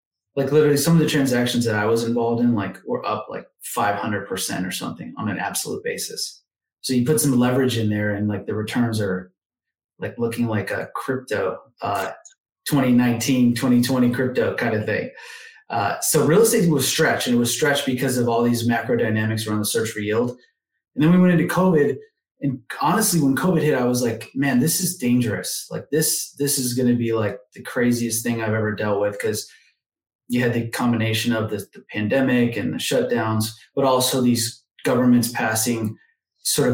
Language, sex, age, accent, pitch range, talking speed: English, male, 30-49, American, 115-135 Hz, 195 wpm